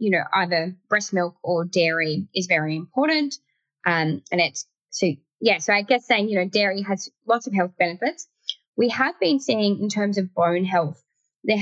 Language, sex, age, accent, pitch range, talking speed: English, female, 10-29, Australian, 170-210 Hz, 190 wpm